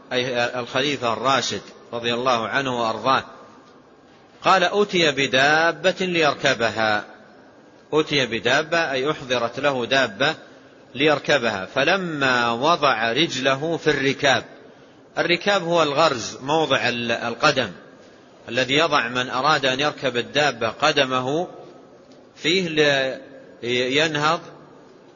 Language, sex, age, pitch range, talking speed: Arabic, male, 40-59, 125-160 Hz, 90 wpm